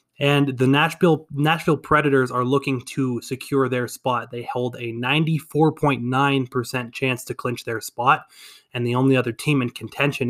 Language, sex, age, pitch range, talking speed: English, male, 20-39, 125-145 Hz, 155 wpm